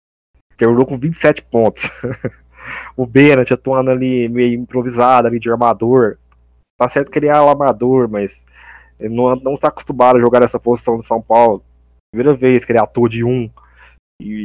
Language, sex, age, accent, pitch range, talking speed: Portuguese, male, 20-39, Brazilian, 105-140 Hz, 165 wpm